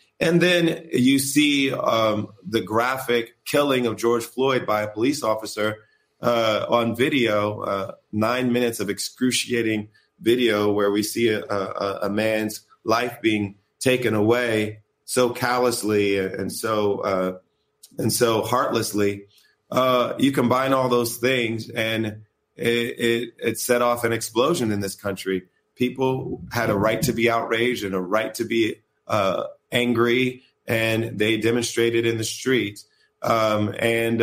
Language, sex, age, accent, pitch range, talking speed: Portuguese, male, 30-49, American, 105-125 Hz, 145 wpm